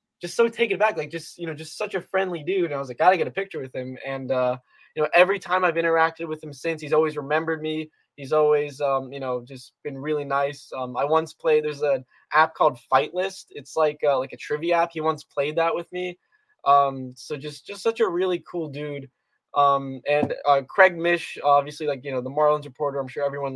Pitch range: 140-165 Hz